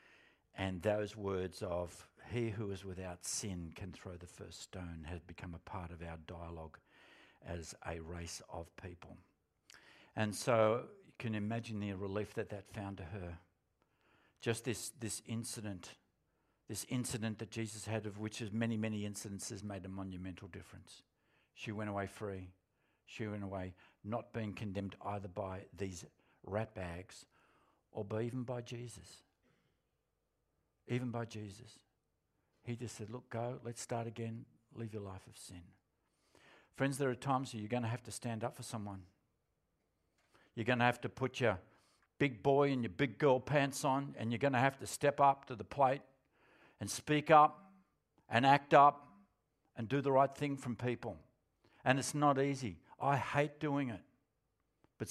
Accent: Australian